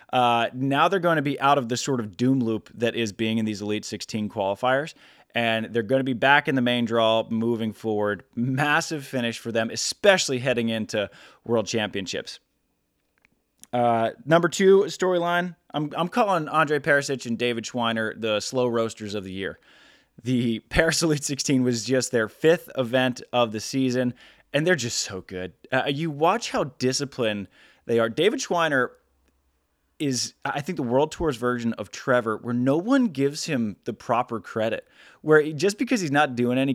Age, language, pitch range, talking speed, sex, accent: 20-39, English, 110-140 Hz, 180 wpm, male, American